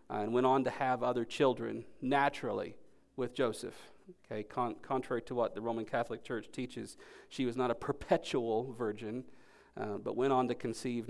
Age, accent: 40-59, American